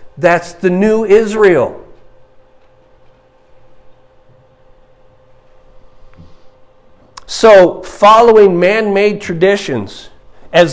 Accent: American